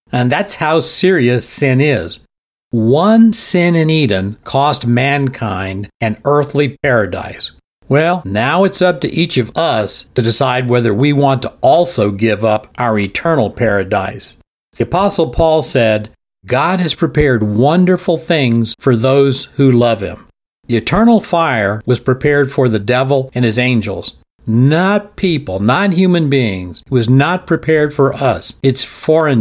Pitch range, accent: 115-160 Hz, American